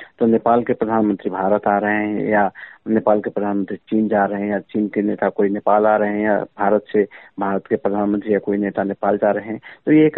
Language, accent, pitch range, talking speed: Hindi, native, 105-125 Hz, 240 wpm